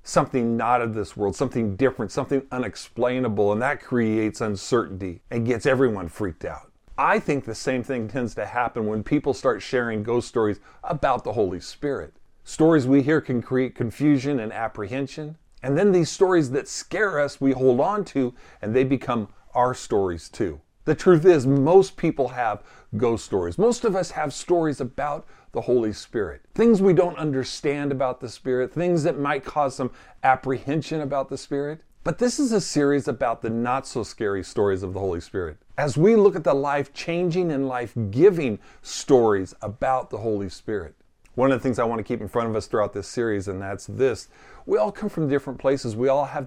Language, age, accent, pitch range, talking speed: English, 40-59, American, 110-145 Hz, 190 wpm